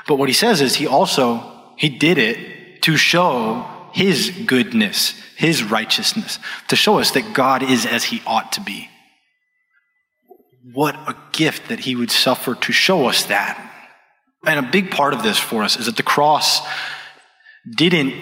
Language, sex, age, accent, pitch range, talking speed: English, male, 20-39, American, 130-210 Hz, 170 wpm